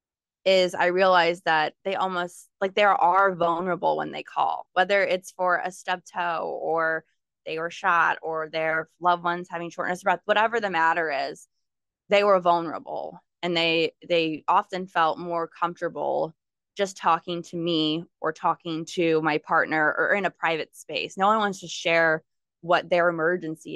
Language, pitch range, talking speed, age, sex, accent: English, 160-185 Hz, 170 wpm, 20-39, female, American